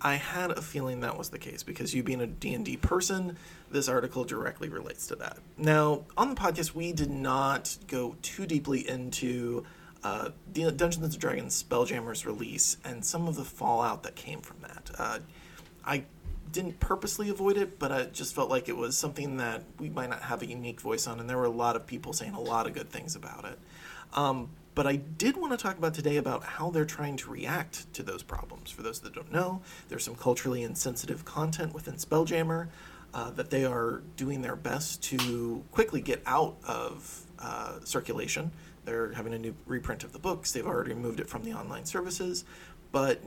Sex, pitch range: male, 130-175 Hz